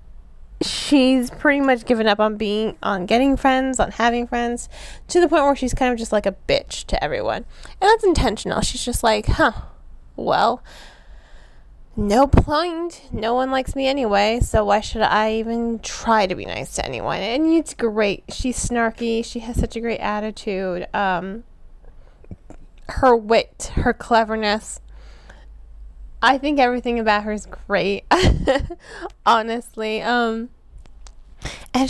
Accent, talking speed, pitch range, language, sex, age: American, 145 wpm, 210-255 Hz, English, female, 10-29